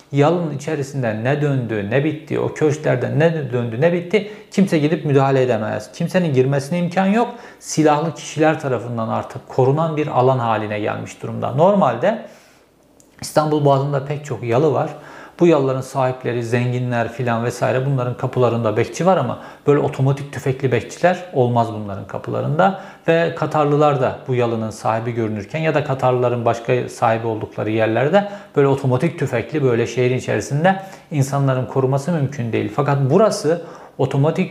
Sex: male